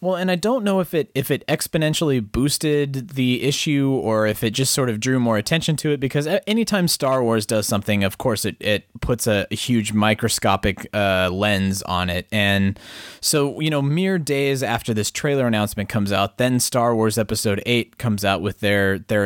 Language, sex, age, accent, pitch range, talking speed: English, male, 20-39, American, 105-135 Hz, 200 wpm